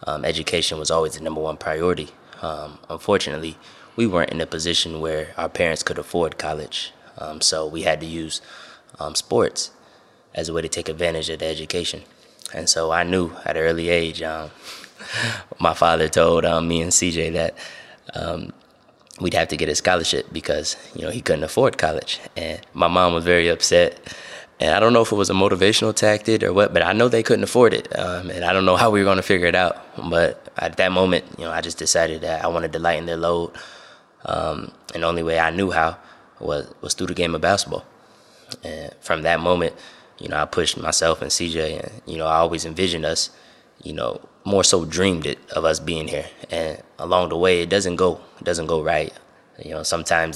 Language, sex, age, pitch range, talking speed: English, male, 20-39, 80-90 Hz, 215 wpm